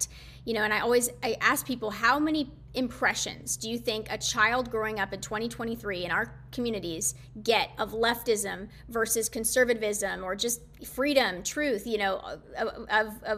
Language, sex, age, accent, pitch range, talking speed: English, female, 30-49, American, 215-250 Hz, 160 wpm